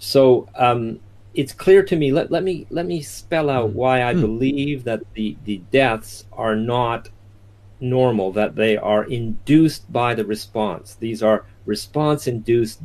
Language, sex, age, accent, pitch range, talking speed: English, male, 50-69, American, 100-130 Hz, 155 wpm